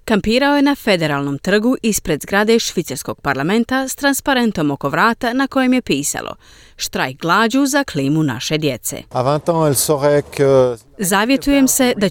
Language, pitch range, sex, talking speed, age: Croatian, 150-245 Hz, female, 130 wpm, 30-49